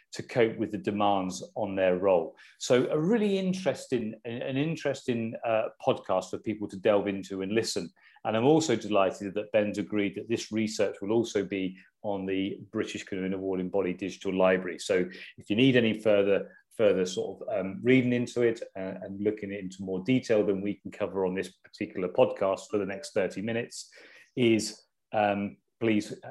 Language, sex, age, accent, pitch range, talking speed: English, male, 40-59, British, 100-130 Hz, 185 wpm